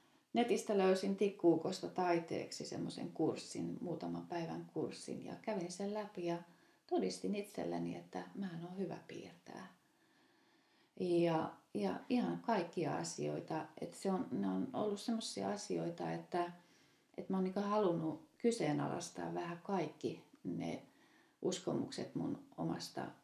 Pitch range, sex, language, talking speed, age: 155-205 Hz, female, Finnish, 120 wpm, 30-49